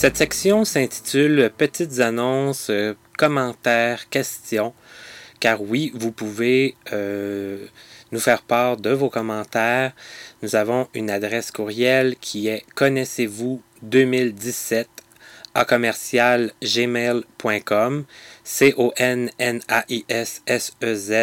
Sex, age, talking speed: male, 30-49, 90 wpm